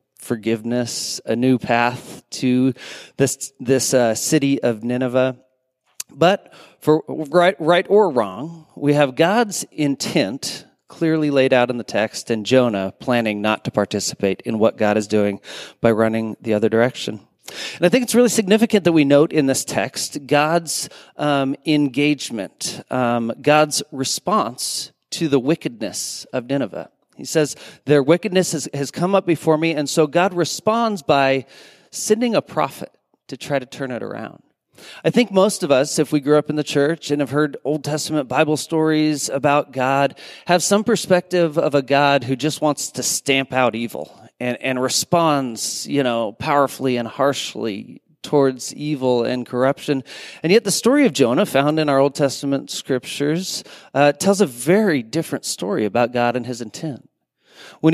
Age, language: 40-59, English